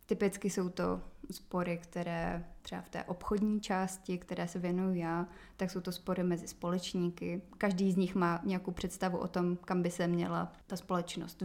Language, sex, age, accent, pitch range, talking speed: Czech, female, 20-39, native, 175-190 Hz, 180 wpm